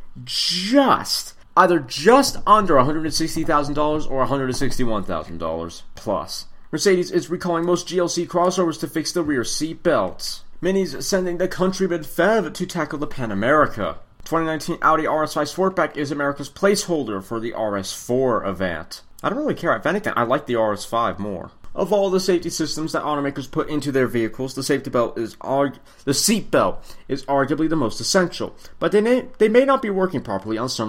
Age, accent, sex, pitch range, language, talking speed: 30-49, American, male, 120-170 Hz, English, 195 wpm